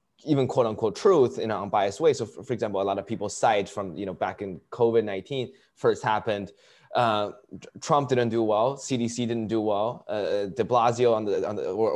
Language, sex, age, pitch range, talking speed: English, male, 20-39, 105-130 Hz, 200 wpm